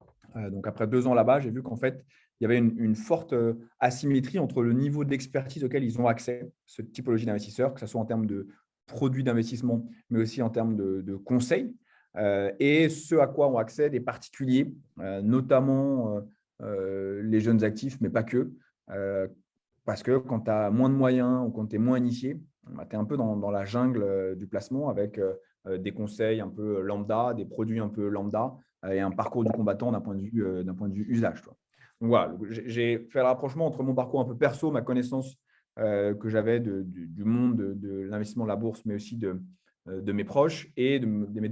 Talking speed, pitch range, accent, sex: 215 wpm, 105-130 Hz, French, male